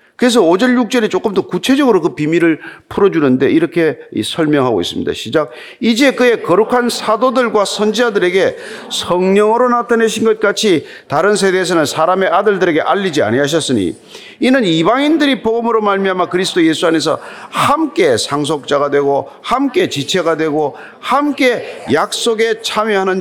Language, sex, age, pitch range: Korean, male, 40-59, 185-260 Hz